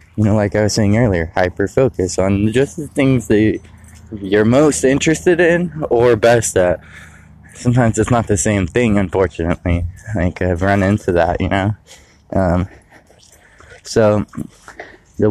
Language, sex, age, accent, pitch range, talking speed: English, male, 20-39, American, 90-105 Hz, 145 wpm